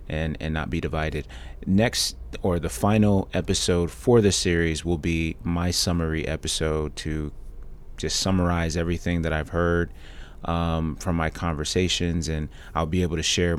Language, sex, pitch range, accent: English, male, 80-90 Hz, American